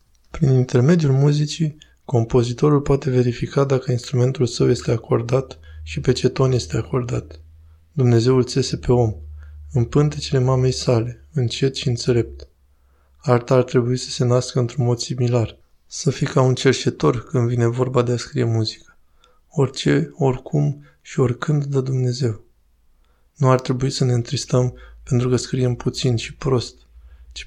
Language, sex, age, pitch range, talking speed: Romanian, male, 20-39, 115-135 Hz, 150 wpm